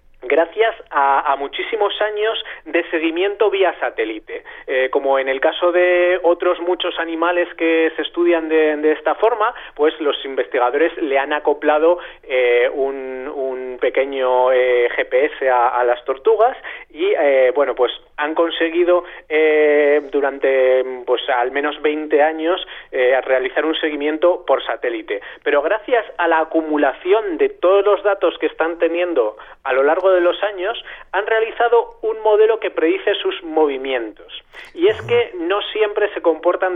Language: Spanish